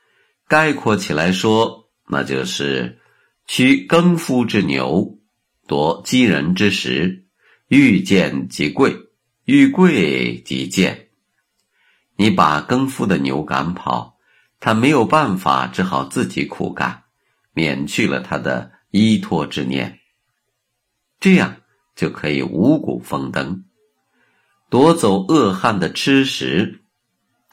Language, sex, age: Chinese, male, 50-69